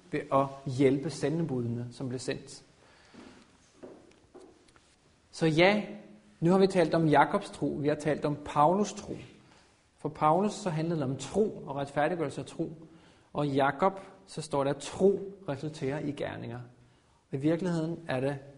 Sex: male